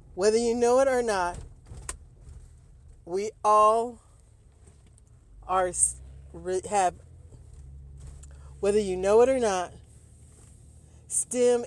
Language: English